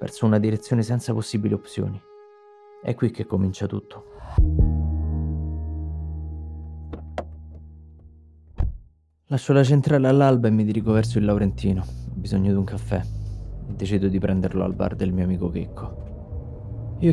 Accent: native